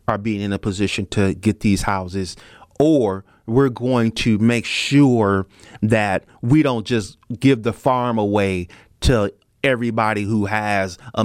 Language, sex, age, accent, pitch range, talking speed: English, male, 30-49, American, 100-135 Hz, 150 wpm